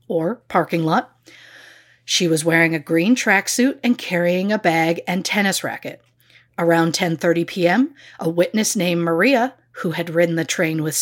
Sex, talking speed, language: female, 160 wpm, English